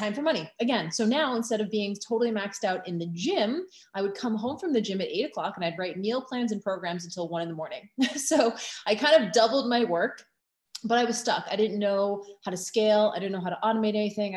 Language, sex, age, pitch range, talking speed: English, female, 20-39, 185-240 Hz, 255 wpm